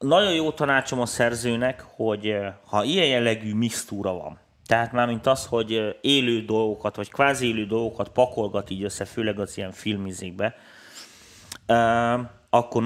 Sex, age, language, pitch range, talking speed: male, 30-49, Hungarian, 100-125 Hz, 130 wpm